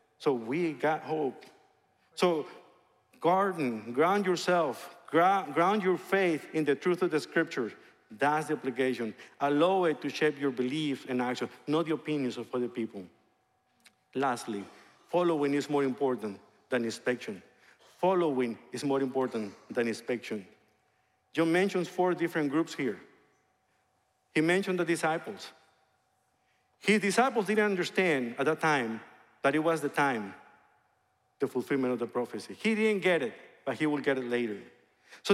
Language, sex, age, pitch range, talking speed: English, male, 50-69, 145-220 Hz, 145 wpm